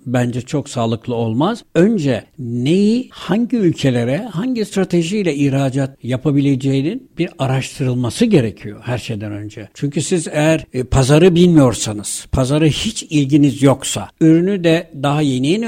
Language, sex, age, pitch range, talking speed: Turkish, male, 60-79, 130-170 Hz, 120 wpm